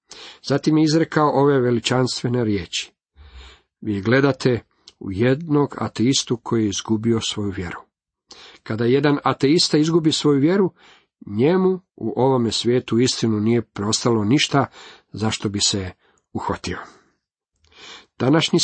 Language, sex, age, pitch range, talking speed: Croatian, male, 50-69, 115-145 Hz, 115 wpm